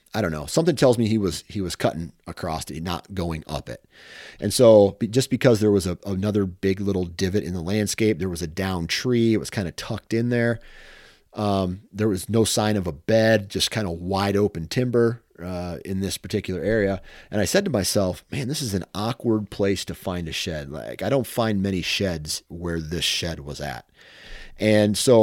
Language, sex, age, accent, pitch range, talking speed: English, male, 40-59, American, 90-110 Hz, 215 wpm